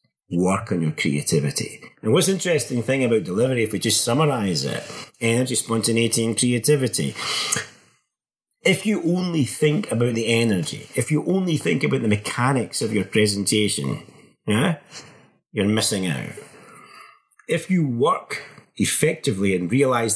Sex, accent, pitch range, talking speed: male, British, 105-145 Hz, 135 wpm